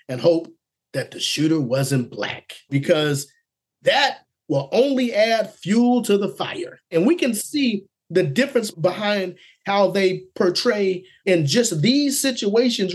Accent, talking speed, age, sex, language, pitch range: American, 140 wpm, 30-49, male, English, 155-225 Hz